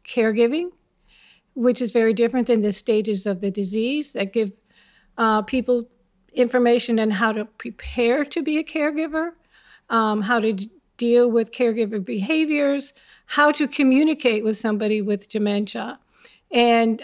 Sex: female